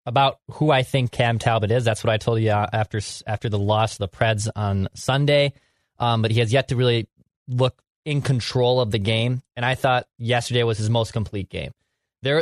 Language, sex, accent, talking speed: English, male, American, 215 wpm